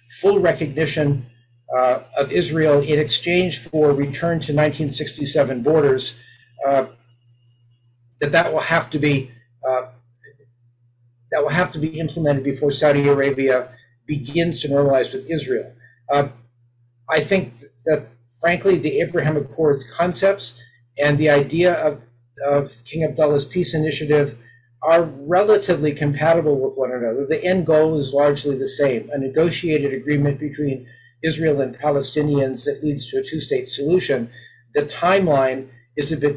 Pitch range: 130-160 Hz